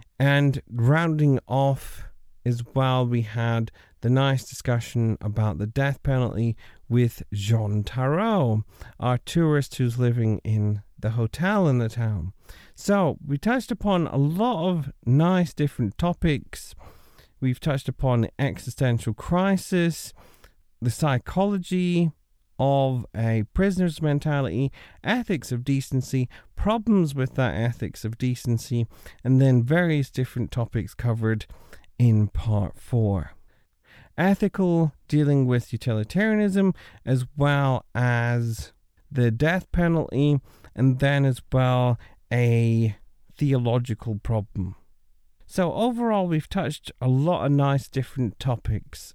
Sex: male